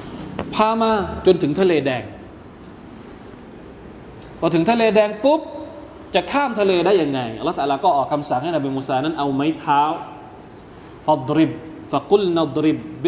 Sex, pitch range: male, 135-185 Hz